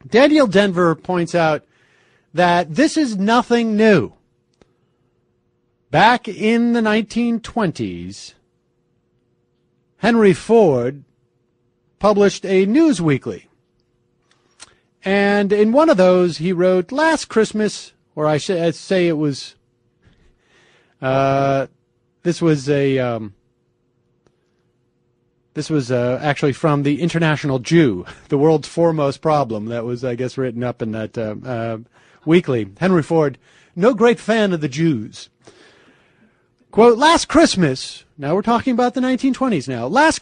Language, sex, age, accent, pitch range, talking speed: English, male, 40-59, American, 130-215 Hz, 120 wpm